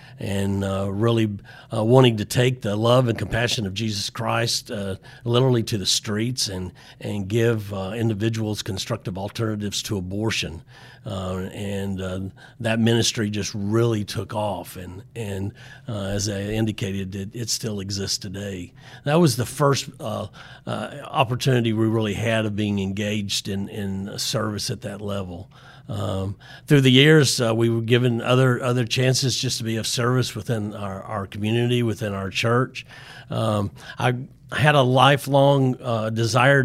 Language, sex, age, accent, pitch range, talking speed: English, male, 40-59, American, 105-125 Hz, 160 wpm